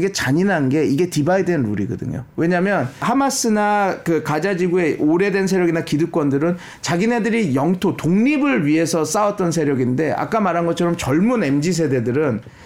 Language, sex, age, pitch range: Korean, male, 40-59, 165-220 Hz